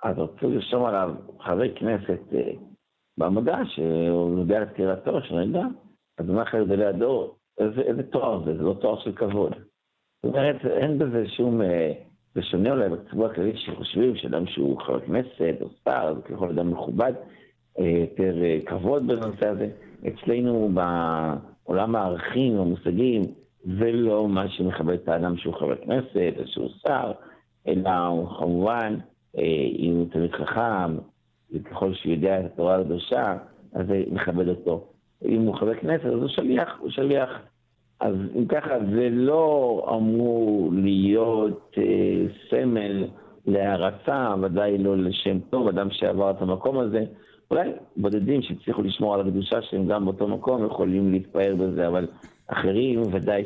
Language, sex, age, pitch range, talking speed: Hebrew, male, 60-79, 90-115 Hz, 145 wpm